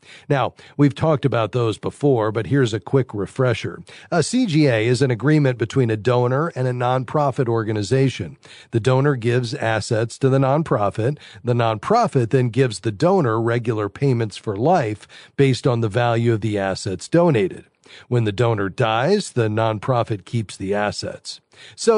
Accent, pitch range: American, 115-150 Hz